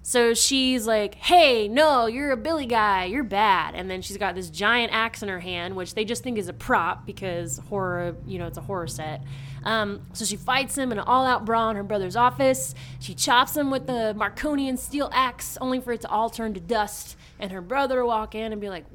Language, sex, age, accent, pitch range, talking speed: English, female, 20-39, American, 200-240 Hz, 230 wpm